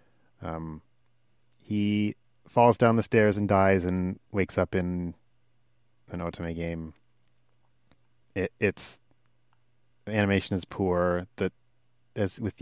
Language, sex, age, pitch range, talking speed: English, male, 30-49, 85-120 Hz, 115 wpm